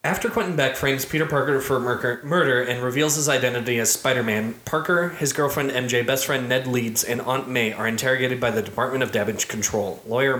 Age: 20-39